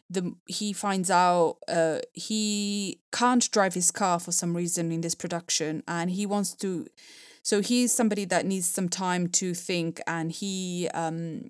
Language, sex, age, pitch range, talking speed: English, female, 20-39, 175-205 Hz, 165 wpm